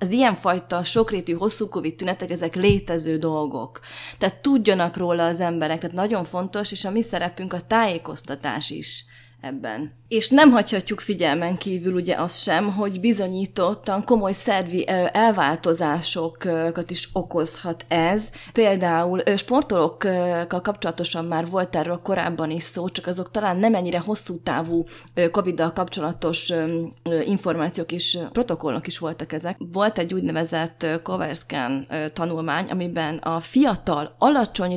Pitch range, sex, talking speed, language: 165-195 Hz, female, 130 wpm, Hungarian